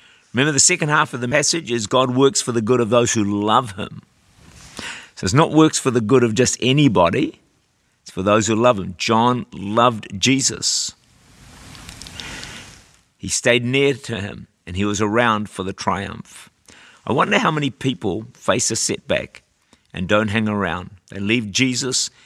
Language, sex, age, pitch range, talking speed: English, male, 50-69, 100-125 Hz, 175 wpm